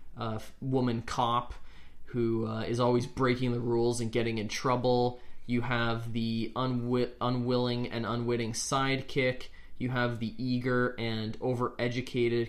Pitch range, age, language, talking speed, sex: 110-125 Hz, 20-39, English, 135 wpm, male